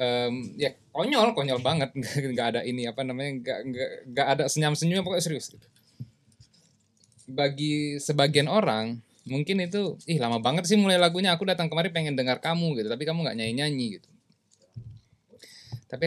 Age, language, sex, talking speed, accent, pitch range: 20-39, Indonesian, male, 155 wpm, native, 115-150 Hz